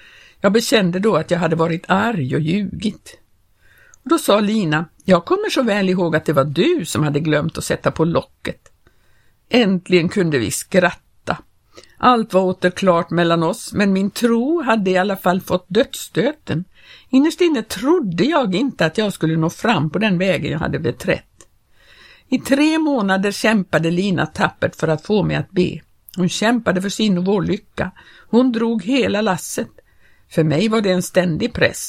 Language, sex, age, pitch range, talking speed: Swedish, female, 60-79, 170-230 Hz, 175 wpm